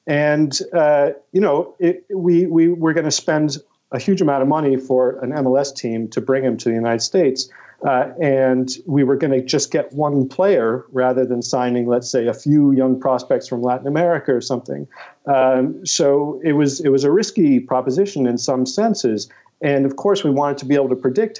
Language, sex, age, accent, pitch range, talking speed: English, male, 50-69, American, 125-150 Hz, 205 wpm